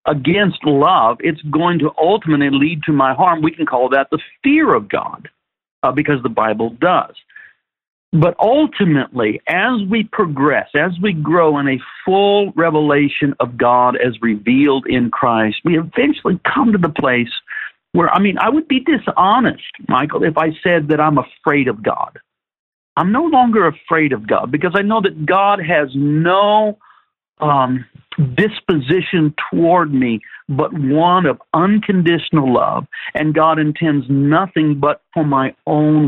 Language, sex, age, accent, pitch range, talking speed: English, male, 60-79, American, 140-185 Hz, 155 wpm